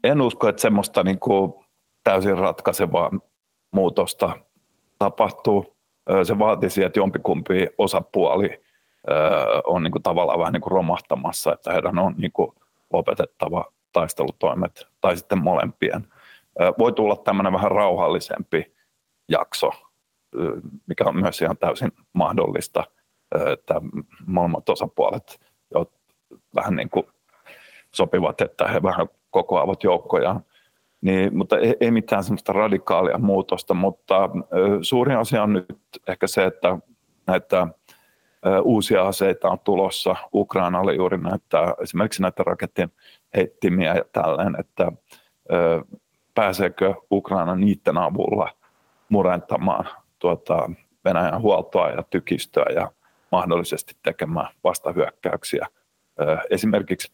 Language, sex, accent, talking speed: Finnish, male, native, 105 wpm